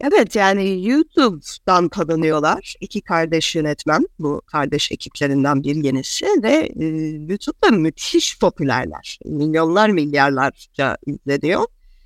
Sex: female